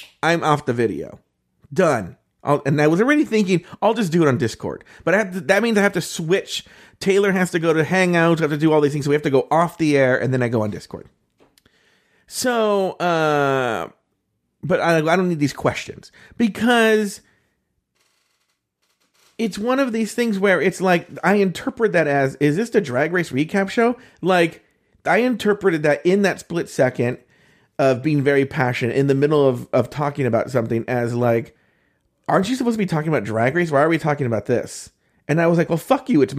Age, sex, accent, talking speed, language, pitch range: 40-59, male, American, 205 wpm, English, 140-200 Hz